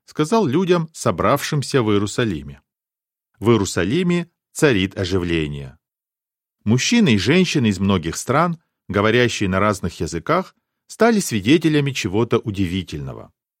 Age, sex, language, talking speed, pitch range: 40-59, male, Russian, 100 wpm, 100-165 Hz